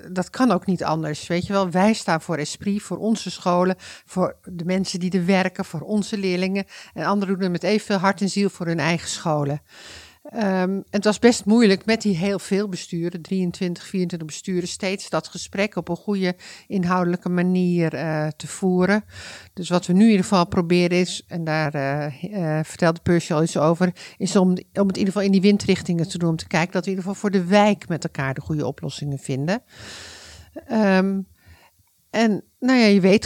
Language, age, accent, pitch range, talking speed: Dutch, 50-69, Dutch, 165-195 Hz, 205 wpm